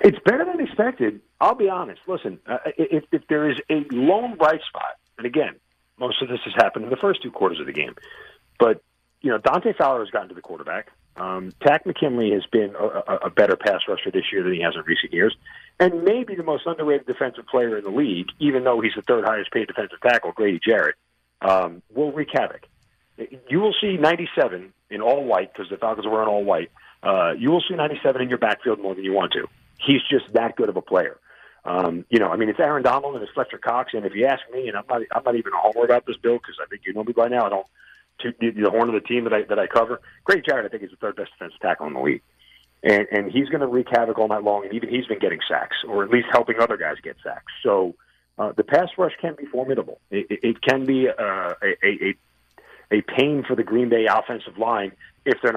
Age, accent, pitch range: 50-69, American, 105-155 Hz